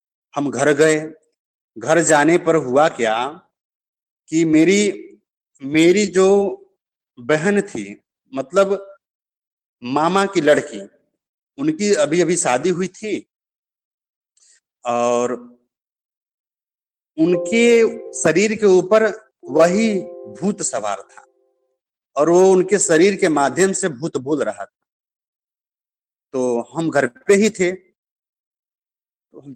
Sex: male